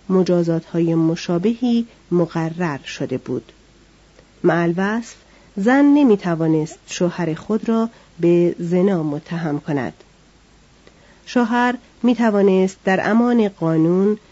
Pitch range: 165-220 Hz